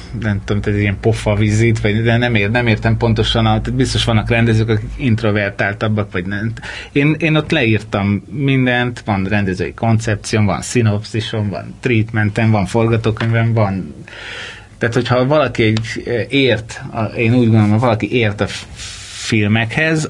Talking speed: 135 wpm